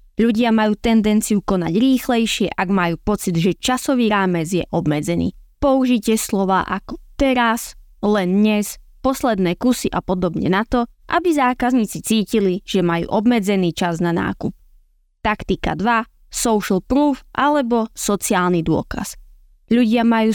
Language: Slovak